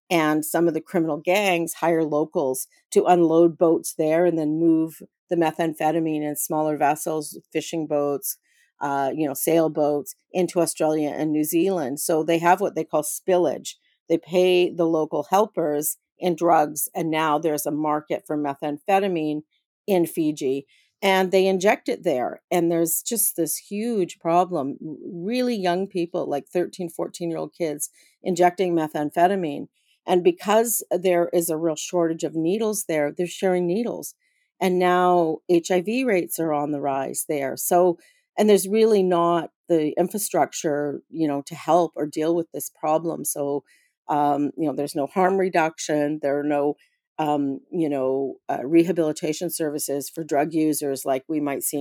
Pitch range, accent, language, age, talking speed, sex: 150-180 Hz, American, English, 50-69, 160 wpm, female